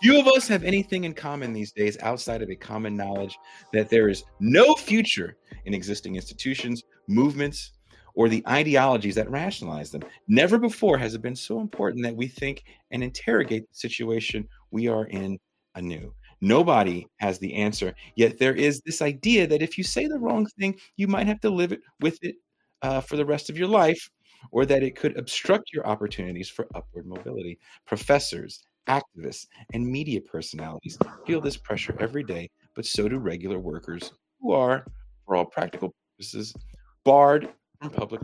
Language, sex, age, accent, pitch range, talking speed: English, male, 40-59, American, 105-175 Hz, 175 wpm